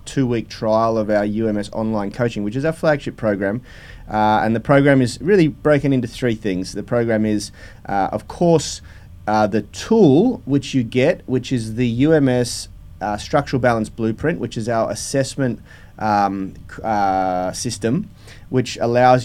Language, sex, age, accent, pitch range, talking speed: English, male, 30-49, Australian, 105-135 Hz, 160 wpm